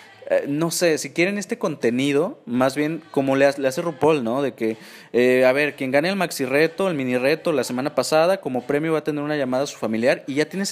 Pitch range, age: 115-155 Hz, 30-49